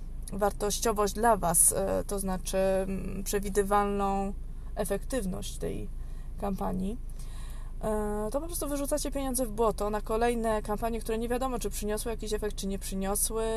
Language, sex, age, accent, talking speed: Polish, female, 20-39, native, 130 wpm